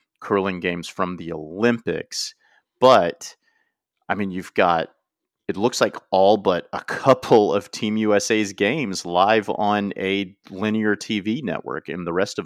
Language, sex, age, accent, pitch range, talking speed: English, male, 40-59, American, 90-105 Hz, 150 wpm